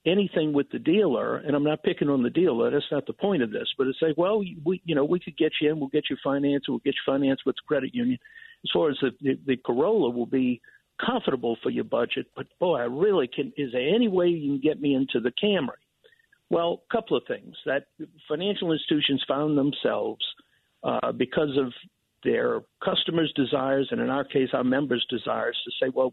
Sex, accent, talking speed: male, American, 220 wpm